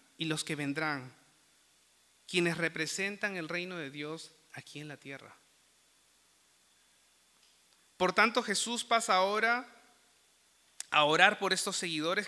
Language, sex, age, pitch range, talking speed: Spanish, male, 30-49, 160-220 Hz, 115 wpm